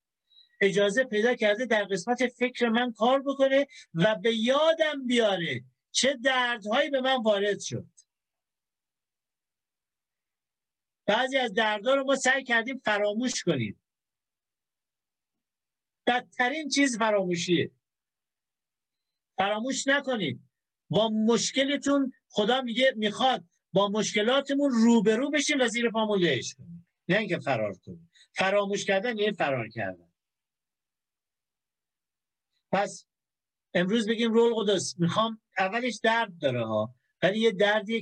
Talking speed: 105 wpm